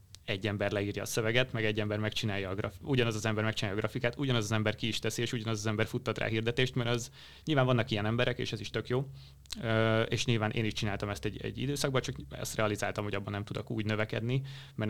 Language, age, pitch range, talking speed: Hungarian, 30-49, 105-125 Hz, 245 wpm